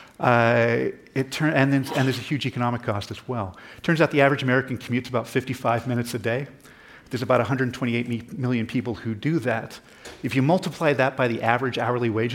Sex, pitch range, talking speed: male, 115-140 Hz, 210 wpm